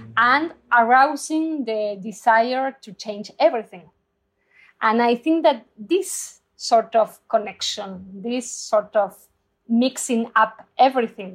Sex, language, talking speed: female, English, 110 wpm